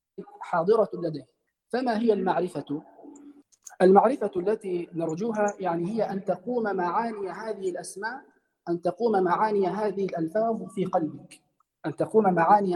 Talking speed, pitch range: 120 wpm, 170-215 Hz